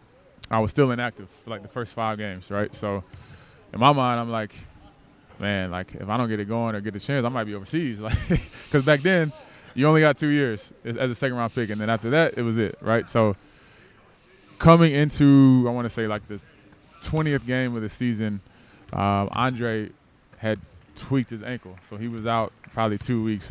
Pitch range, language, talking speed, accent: 105-125 Hz, English, 205 wpm, American